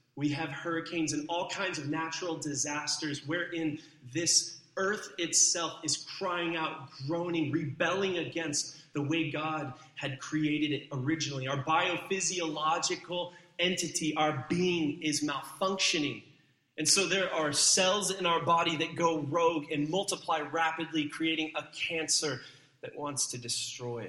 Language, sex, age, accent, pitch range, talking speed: English, male, 30-49, American, 130-165 Hz, 135 wpm